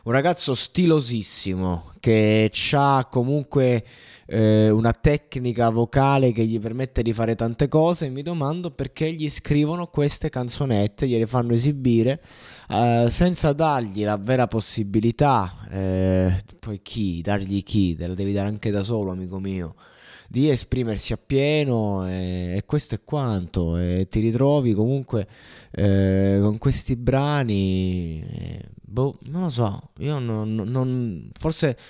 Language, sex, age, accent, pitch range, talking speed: Italian, male, 20-39, native, 95-130 Hz, 140 wpm